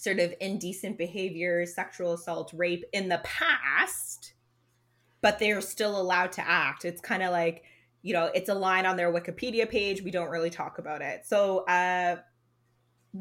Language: English